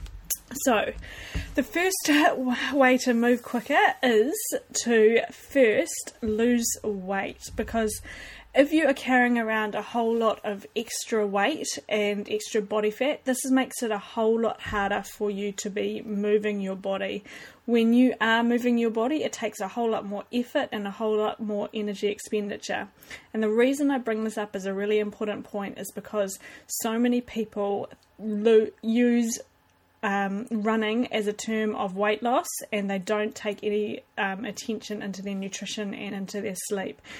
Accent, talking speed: Australian, 165 wpm